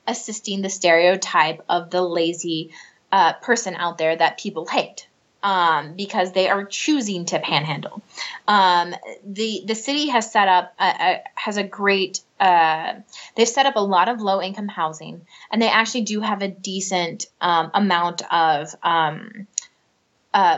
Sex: female